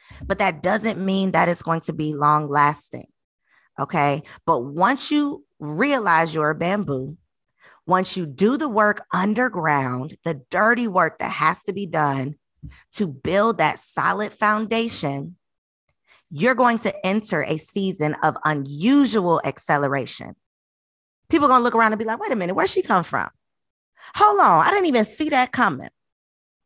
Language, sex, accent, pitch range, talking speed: English, female, American, 150-230 Hz, 160 wpm